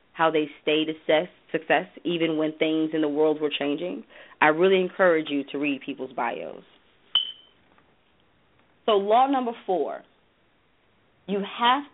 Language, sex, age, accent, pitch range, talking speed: English, female, 30-49, American, 160-205 Hz, 135 wpm